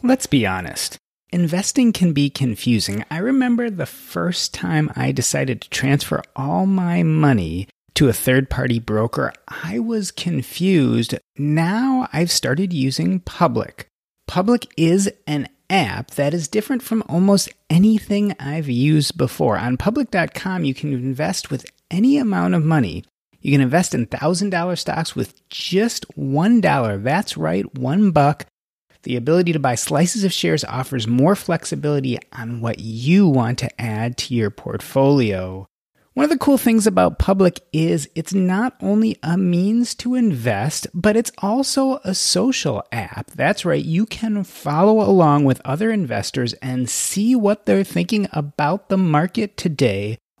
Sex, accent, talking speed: male, American, 150 wpm